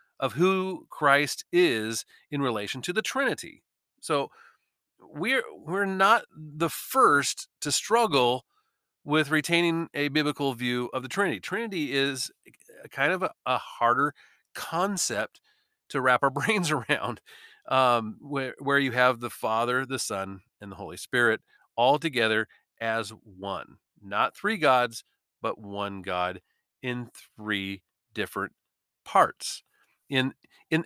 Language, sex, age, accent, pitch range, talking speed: English, male, 40-59, American, 120-155 Hz, 130 wpm